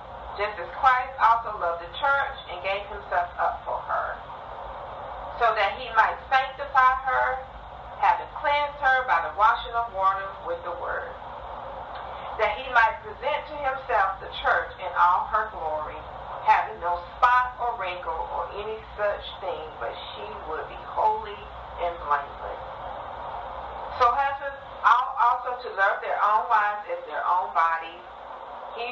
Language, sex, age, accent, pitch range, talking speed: English, female, 40-59, American, 190-250 Hz, 150 wpm